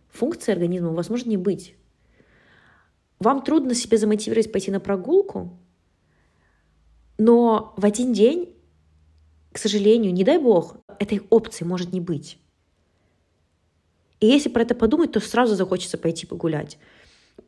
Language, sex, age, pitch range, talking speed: Russian, female, 20-39, 155-210 Hz, 125 wpm